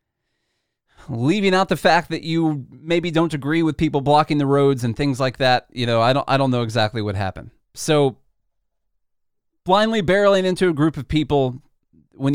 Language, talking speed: English, 180 wpm